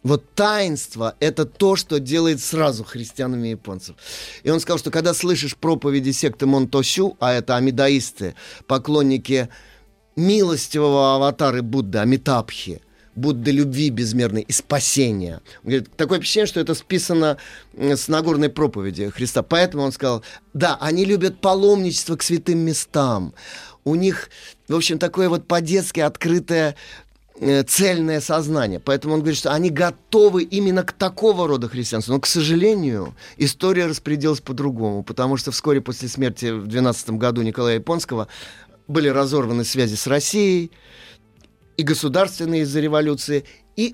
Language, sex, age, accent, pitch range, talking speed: Russian, male, 30-49, native, 125-160 Hz, 140 wpm